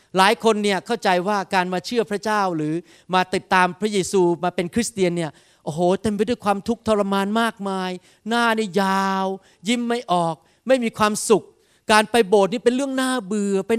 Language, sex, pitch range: Thai, male, 180-245 Hz